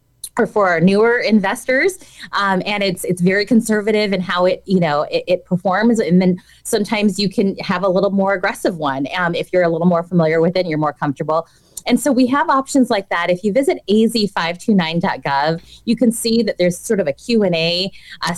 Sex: female